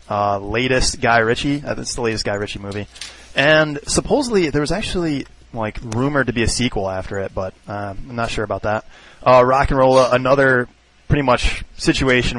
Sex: male